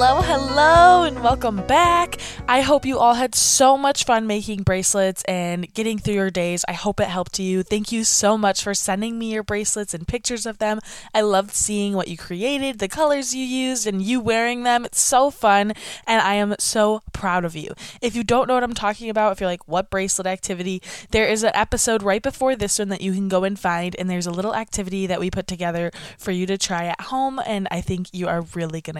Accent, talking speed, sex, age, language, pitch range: American, 230 wpm, female, 20-39, English, 185-230 Hz